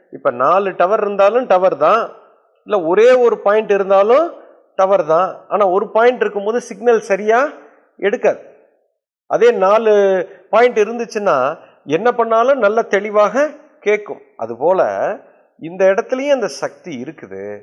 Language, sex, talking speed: Tamil, male, 120 wpm